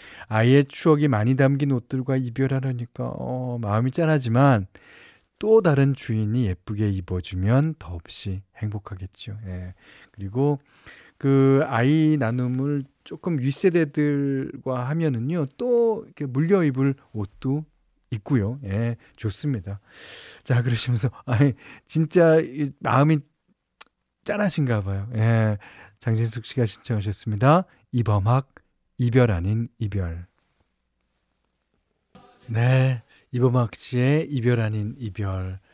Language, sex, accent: Korean, male, native